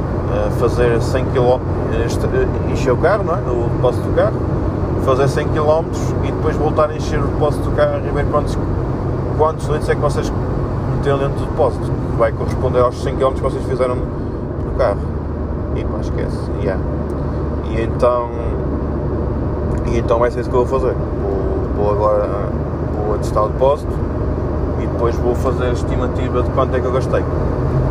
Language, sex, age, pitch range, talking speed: Portuguese, male, 20-39, 85-125 Hz, 170 wpm